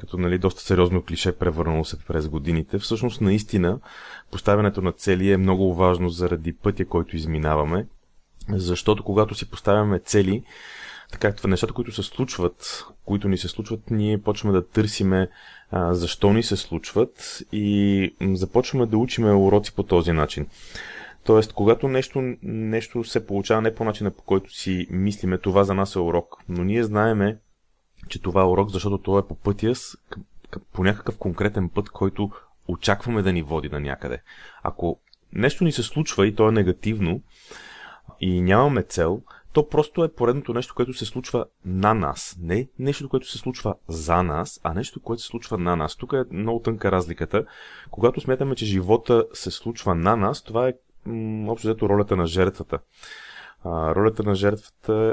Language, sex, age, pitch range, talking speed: Bulgarian, male, 30-49, 90-115 Hz, 170 wpm